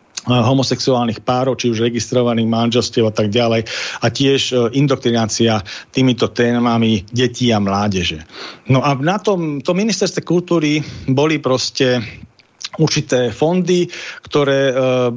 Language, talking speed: Slovak, 120 wpm